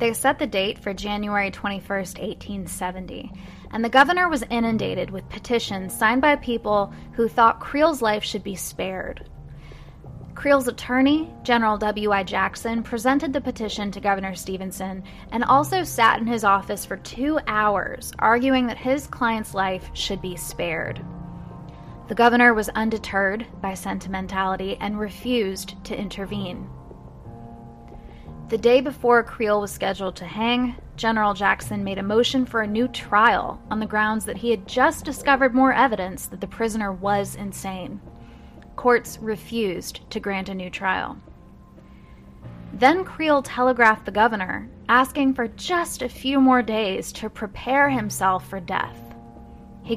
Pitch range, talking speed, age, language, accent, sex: 195-240 Hz, 145 wpm, 10-29, English, American, female